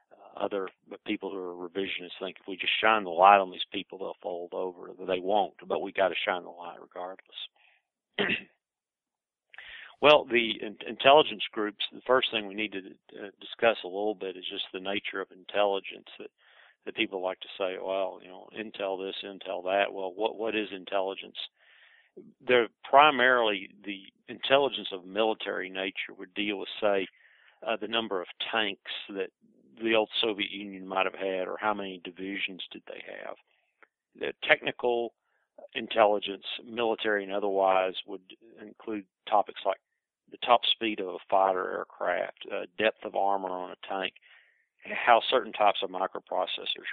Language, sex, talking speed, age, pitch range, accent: English, male, 165 wpm, 50-69, 95-105 Hz, American